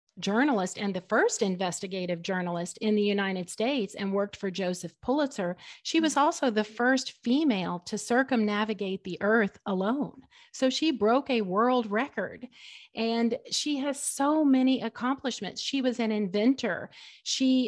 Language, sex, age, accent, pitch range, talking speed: English, female, 40-59, American, 195-250 Hz, 145 wpm